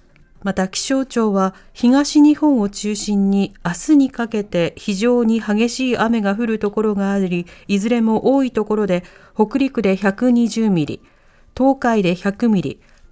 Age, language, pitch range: 40-59, Japanese, 180-245 Hz